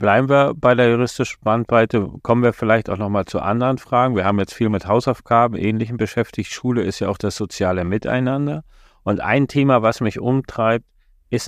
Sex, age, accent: male, 40-59, German